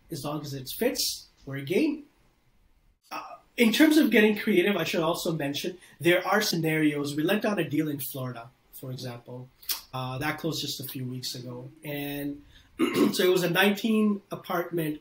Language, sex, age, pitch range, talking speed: English, male, 30-49, 145-175 Hz, 180 wpm